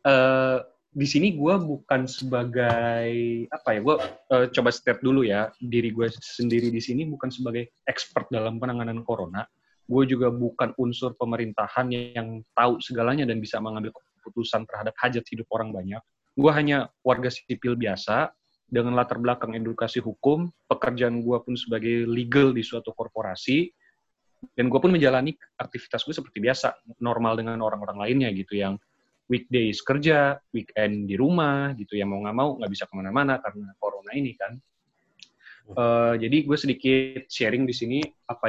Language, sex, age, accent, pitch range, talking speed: Indonesian, male, 30-49, native, 115-130 Hz, 155 wpm